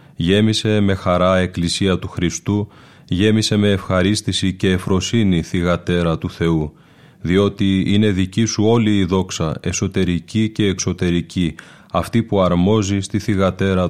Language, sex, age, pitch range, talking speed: Greek, male, 30-49, 85-100 Hz, 125 wpm